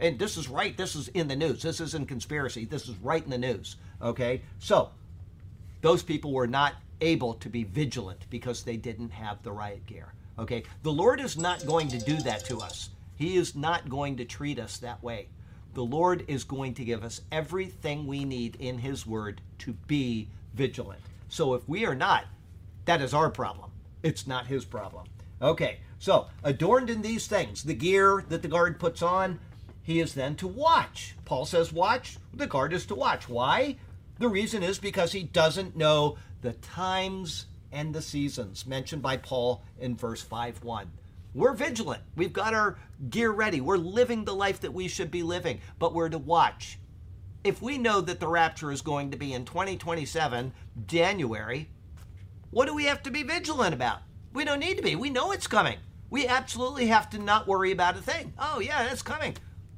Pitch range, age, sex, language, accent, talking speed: 105-175 Hz, 50-69, male, English, American, 195 wpm